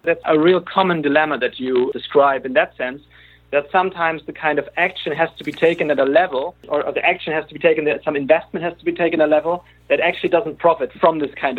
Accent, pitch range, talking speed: German, 140-175 Hz, 250 wpm